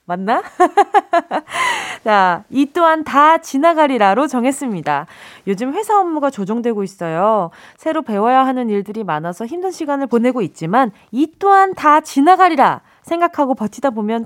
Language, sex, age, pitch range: Korean, female, 20-39, 205-295 Hz